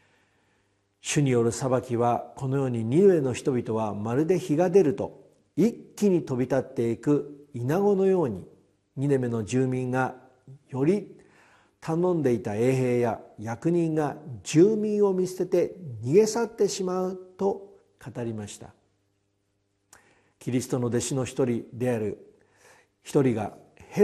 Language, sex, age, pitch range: Japanese, male, 50-69, 115-160 Hz